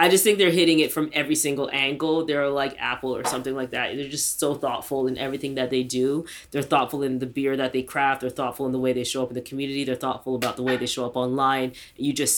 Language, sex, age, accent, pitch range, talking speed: English, female, 20-39, American, 135-165 Hz, 270 wpm